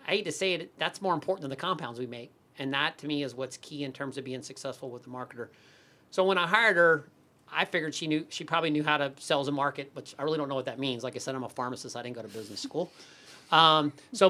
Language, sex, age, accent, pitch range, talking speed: English, male, 40-59, American, 135-165 Hz, 280 wpm